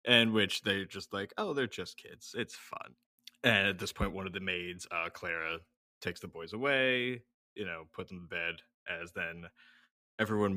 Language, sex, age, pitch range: English, male, 20-39, 85-110 Hz